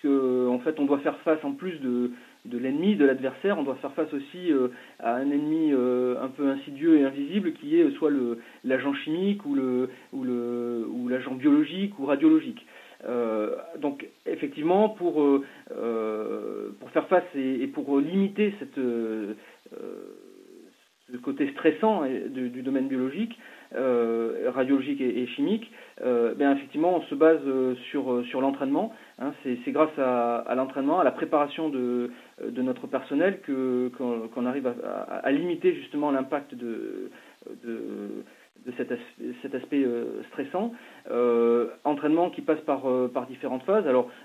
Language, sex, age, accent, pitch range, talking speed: French, male, 30-49, French, 125-155 Hz, 160 wpm